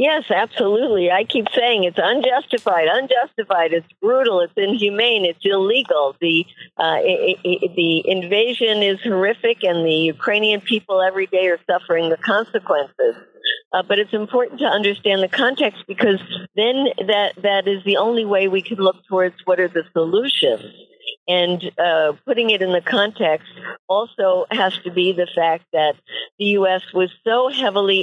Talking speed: 160 wpm